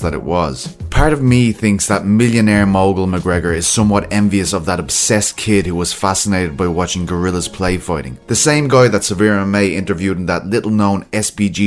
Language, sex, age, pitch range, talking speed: English, male, 20-39, 95-110 Hz, 195 wpm